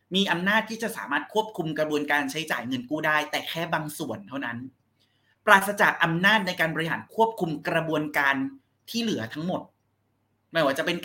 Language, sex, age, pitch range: Thai, male, 30-49, 130-190 Hz